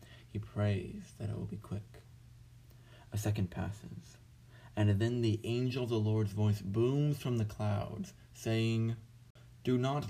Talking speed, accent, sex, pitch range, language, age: 150 wpm, American, male, 100-120 Hz, English, 30-49